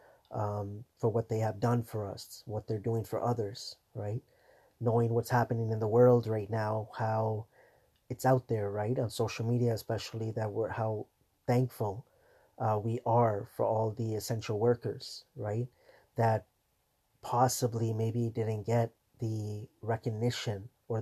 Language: English